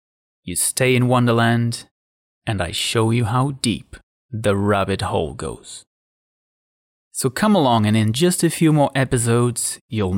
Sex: male